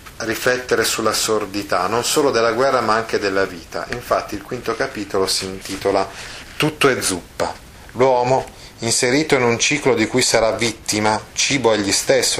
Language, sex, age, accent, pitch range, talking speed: Italian, male, 30-49, native, 100-125 Hz, 155 wpm